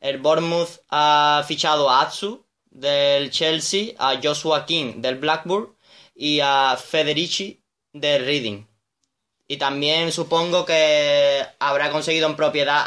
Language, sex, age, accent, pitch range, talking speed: Spanish, male, 20-39, Spanish, 140-165 Hz, 120 wpm